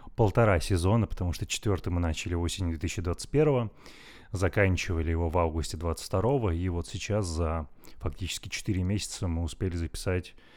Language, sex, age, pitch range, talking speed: Russian, male, 20-39, 85-100 Hz, 135 wpm